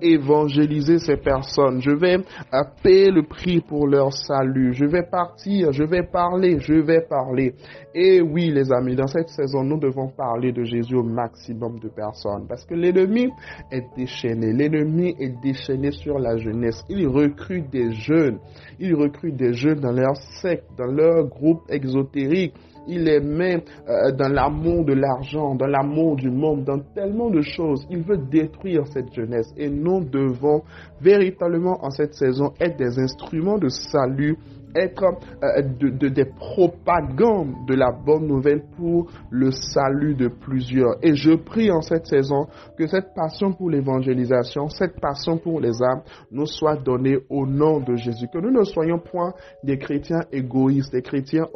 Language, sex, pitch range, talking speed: French, male, 130-165 Hz, 165 wpm